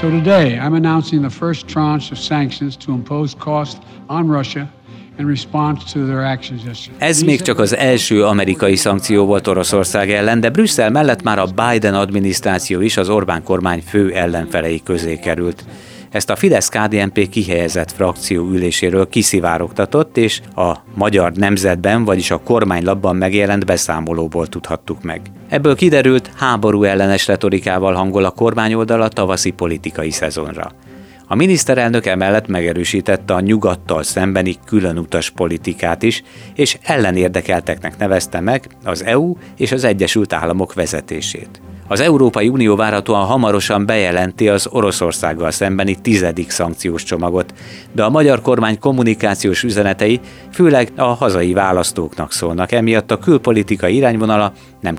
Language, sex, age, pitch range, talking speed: Hungarian, male, 60-79, 90-120 Hz, 115 wpm